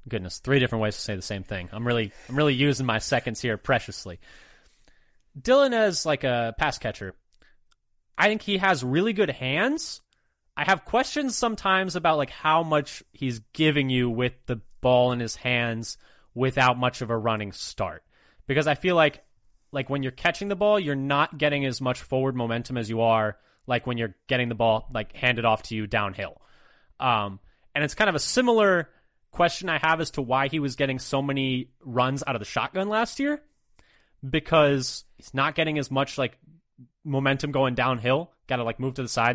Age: 30-49